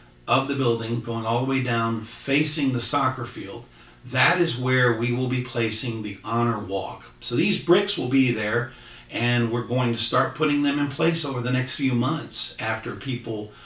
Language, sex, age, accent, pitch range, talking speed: English, male, 50-69, American, 115-140 Hz, 195 wpm